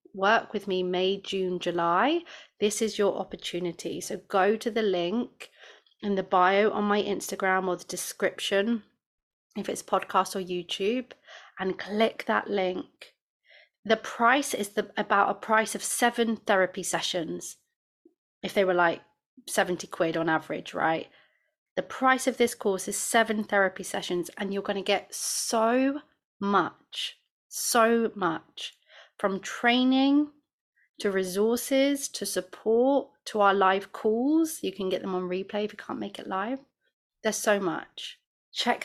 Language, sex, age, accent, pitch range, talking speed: English, female, 30-49, British, 185-225 Hz, 150 wpm